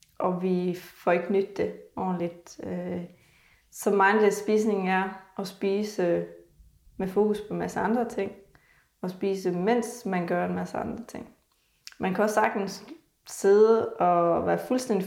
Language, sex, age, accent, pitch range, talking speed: Danish, female, 20-39, native, 180-205 Hz, 145 wpm